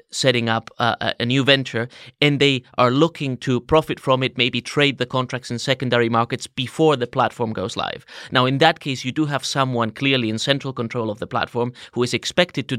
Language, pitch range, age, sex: English, 120-150 Hz, 30-49, male